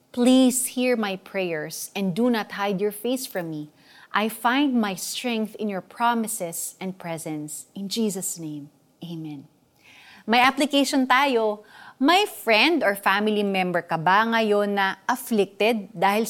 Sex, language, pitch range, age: female, Filipino, 185-245 Hz, 30-49